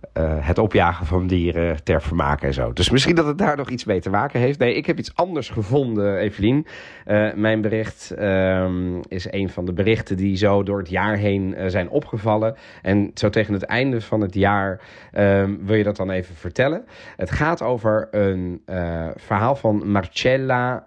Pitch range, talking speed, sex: 90-115 Hz, 190 wpm, male